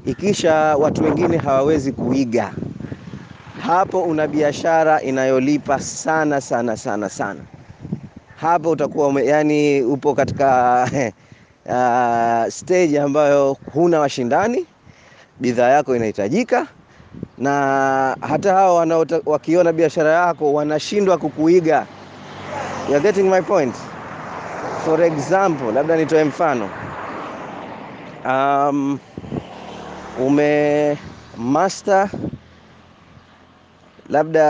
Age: 30-49